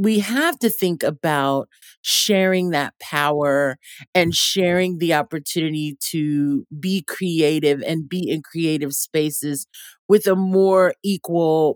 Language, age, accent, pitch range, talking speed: English, 40-59, American, 155-190 Hz, 120 wpm